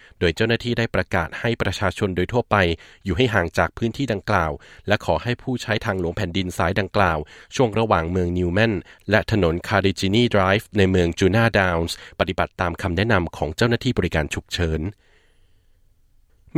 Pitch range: 90-115 Hz